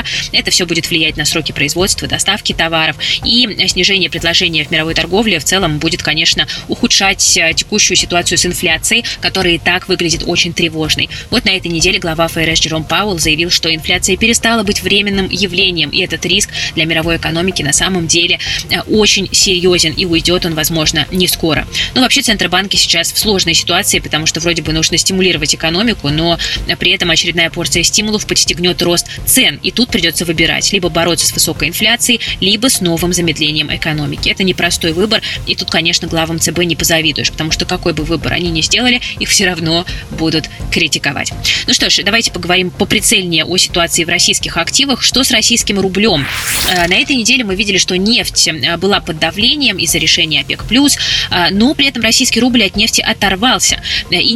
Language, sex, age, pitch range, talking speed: Russian, female, 20-39, 165-195 Hz, 175 wpm